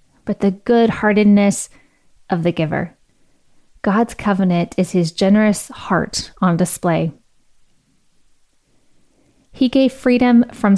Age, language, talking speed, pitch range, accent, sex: 20-39, English, 105 wpm, 185-225 Hz, American, female